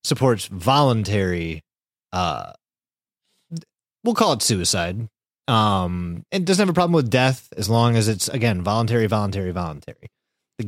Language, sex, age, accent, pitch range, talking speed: English, male, 30-49, American, 105-165 Hz, 135 wpm